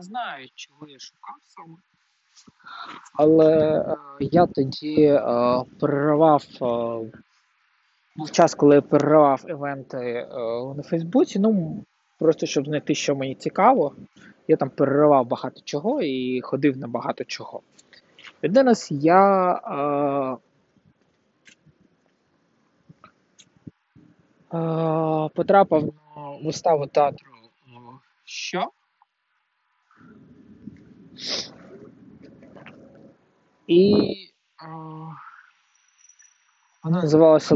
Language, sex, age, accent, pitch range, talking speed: Ukrainian, male, 20-39, native, 135-165 Hz, 90 wpm